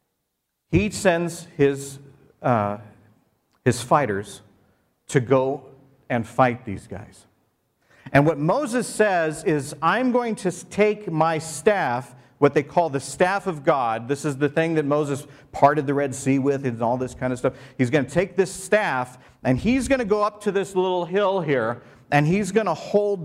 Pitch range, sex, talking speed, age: 125-180 Hz, male, 180 wpm, 50-69